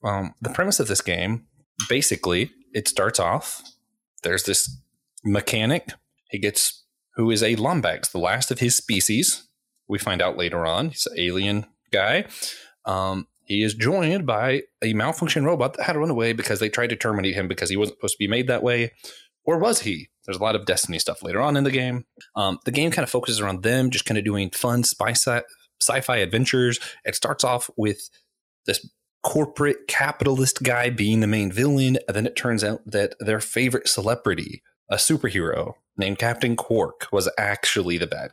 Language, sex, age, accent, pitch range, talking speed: English, male, 20-39, American, 105-130 Hz, 195 wpm